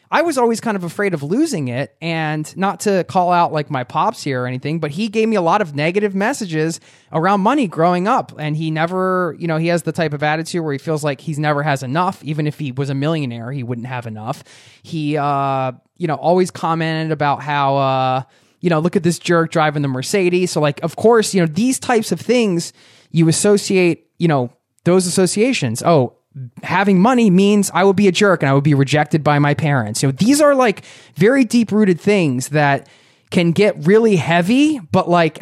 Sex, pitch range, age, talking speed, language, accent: male, 145-185 Hz, 20-39, 220 wpm, English, American